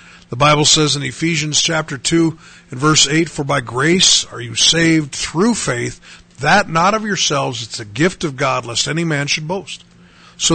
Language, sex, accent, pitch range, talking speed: English, male, American, 145-195 Hz, 190 wpm